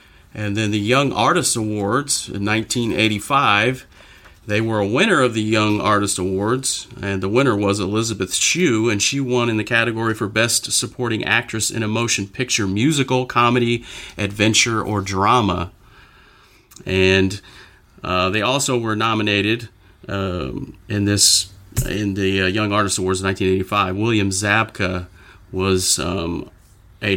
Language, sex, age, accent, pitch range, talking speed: English, male, 40-59, American, 95-120 Hz, 140 wpm